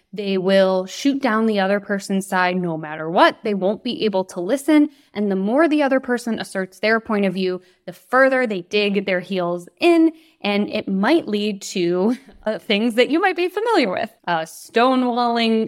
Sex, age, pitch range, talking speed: female, 20-39, 190-250 Hz, 190 wpm